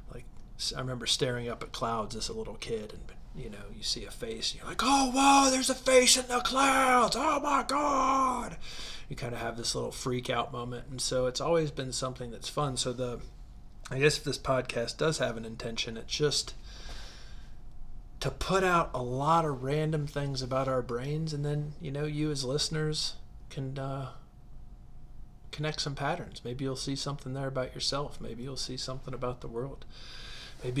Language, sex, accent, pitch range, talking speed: English, male, American, 120-140 Hz, 195 wpm